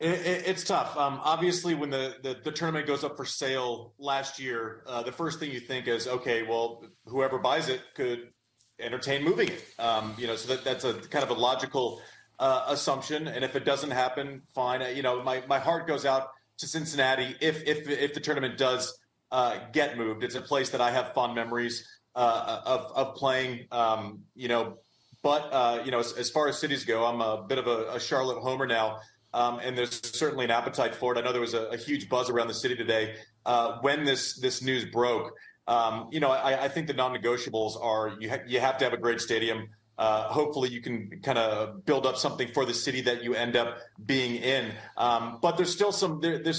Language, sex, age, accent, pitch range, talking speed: English, male, 30-49, American, 120-140 Hz, 225 wpm